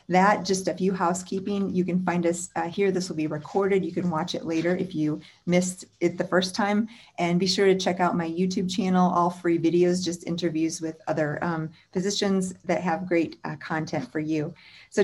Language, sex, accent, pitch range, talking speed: English, female, American, 155-180 Hz, 210 wpm